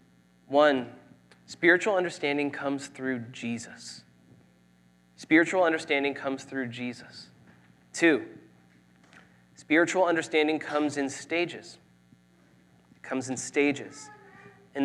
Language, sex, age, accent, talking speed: English, male, 20-39, American, 90 wpm